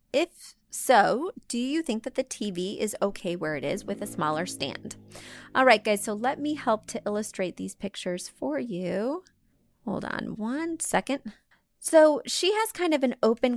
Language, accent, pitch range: English, American, 180-245 Hz